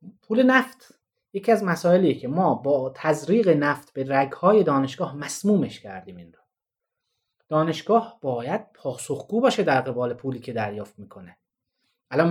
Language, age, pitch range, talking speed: Persian, 30-49, 135-195 Hz, 135 wpm